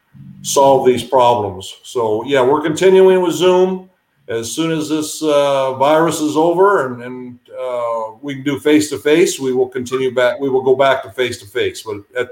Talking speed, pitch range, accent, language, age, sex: 195 wpm, 125-155 Hz, American, English, 50-69, male